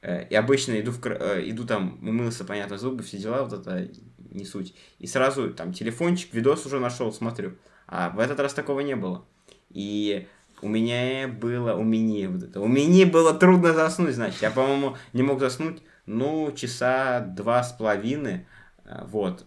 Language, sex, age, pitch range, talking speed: Russian, male, 20-39, 100-130 Hz, 175 wpm